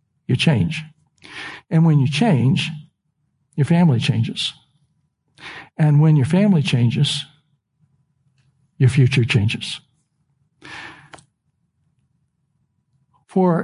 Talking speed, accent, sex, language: 80 wpm, American, male, English